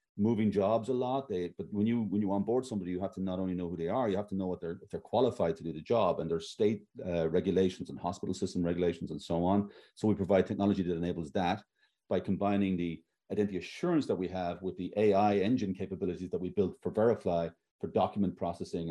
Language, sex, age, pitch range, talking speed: English, male, 40-59, 90-110 Hz, 235 wpm